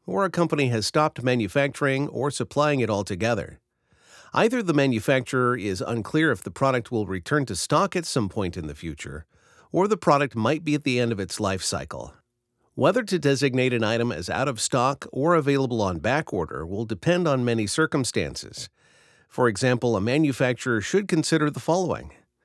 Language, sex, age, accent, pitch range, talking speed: English, male, 50-69, American, 110-140 Hz, 175 wpm